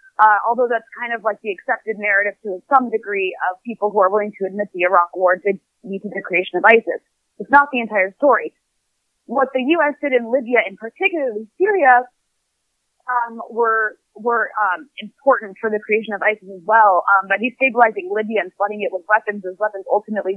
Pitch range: 210-265 Hz